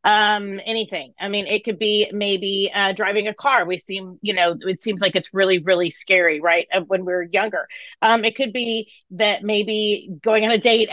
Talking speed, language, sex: 205 wpm, English, female